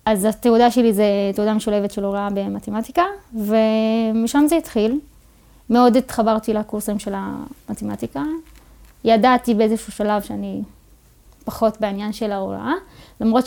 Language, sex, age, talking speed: English, female, 20-39, 115 wpm